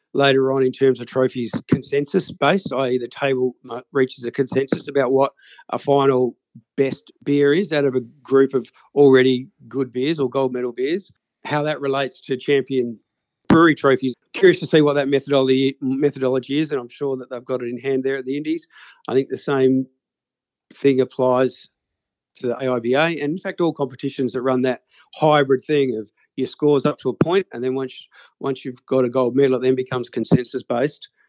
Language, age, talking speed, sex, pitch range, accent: English, 50-69, 190 wpm, male, 130-150 Hz, Australian